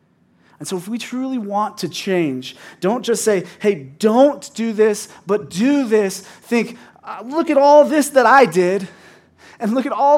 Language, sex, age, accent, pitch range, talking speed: English, male, 30-49, American, 130-195 Hz, 185 wpm